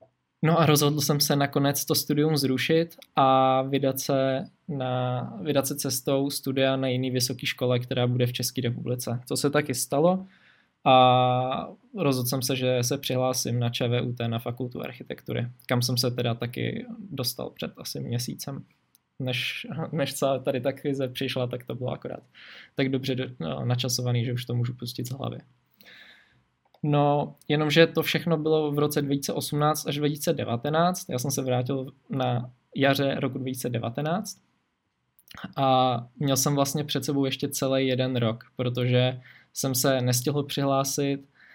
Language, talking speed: Czech, 155 wpm